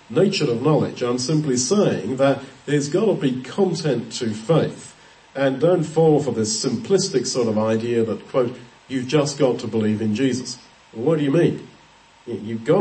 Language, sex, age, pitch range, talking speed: English, male, 40-59, 115-155 Hz, 180 wpm